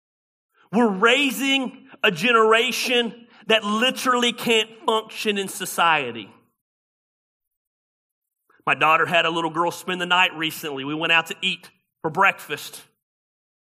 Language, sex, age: English, male, 40-59